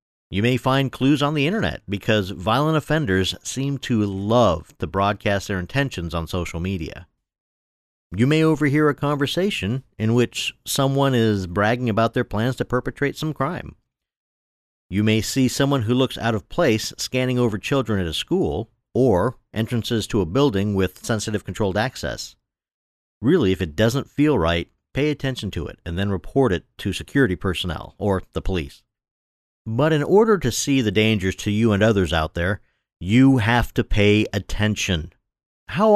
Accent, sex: American, male